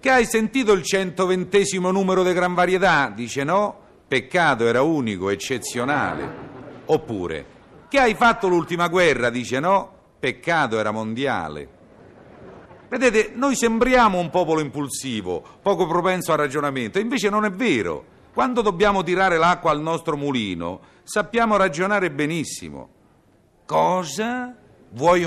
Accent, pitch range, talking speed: native, 140-200 Hz, 125 wpm